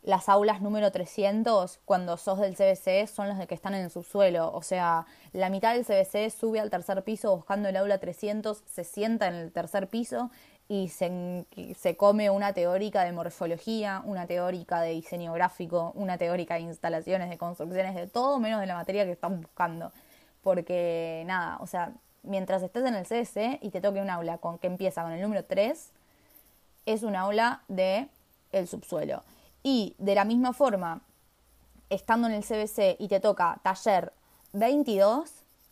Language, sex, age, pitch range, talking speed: Spanish, female, 20-39, 180-220 Hz, 175 wpm